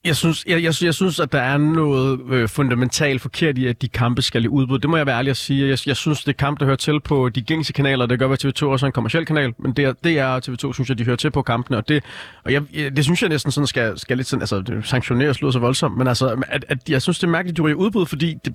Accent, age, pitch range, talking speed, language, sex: native, 30-49, 125-150 Hz, 310 wpm, Danish, male